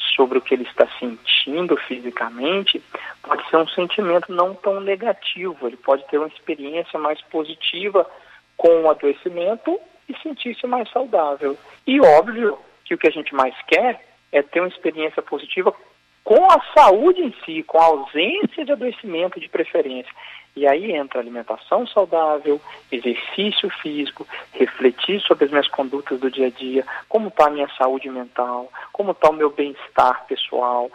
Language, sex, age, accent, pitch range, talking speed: Portuguese, male, 40-59, Brazilian, 135-200 Hz, 160 wpm